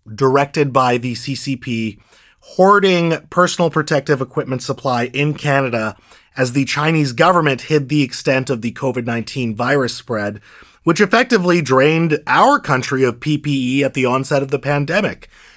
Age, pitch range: 30-49, 130-175 Hz